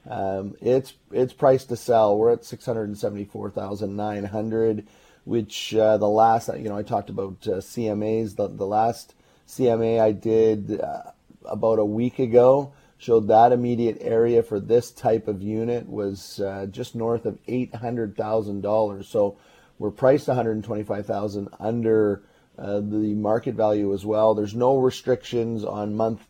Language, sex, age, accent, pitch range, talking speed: English, male, 30-49, American, 105-125 Hz, 140 wpm